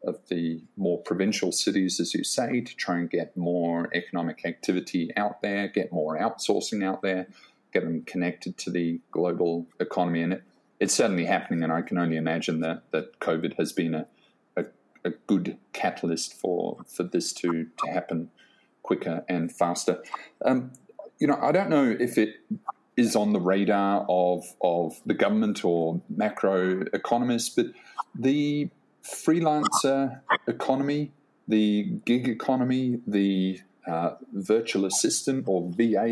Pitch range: 85-120 Hz